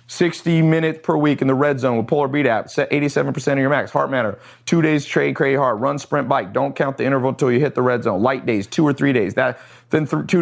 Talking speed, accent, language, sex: 270 wpm, American, English, male